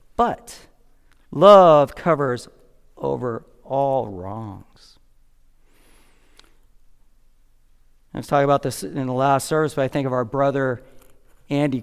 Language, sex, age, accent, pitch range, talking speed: English, male, 40-59, American, 130-155 Hz, 110 wpm